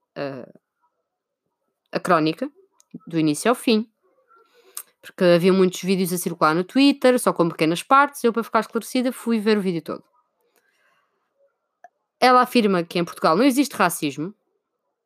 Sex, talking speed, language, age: female, 145 wpm, Portuguese, 20-39